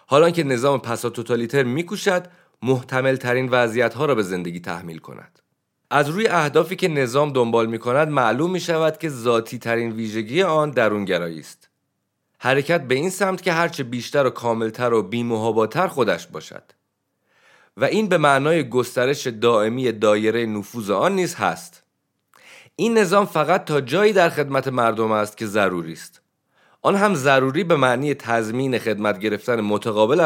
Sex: male